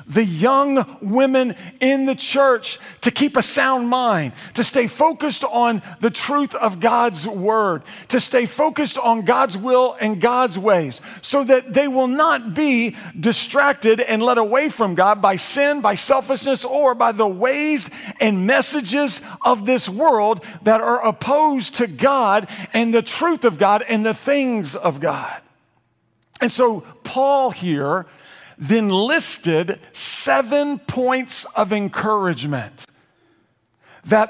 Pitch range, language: 205-270 Hz, English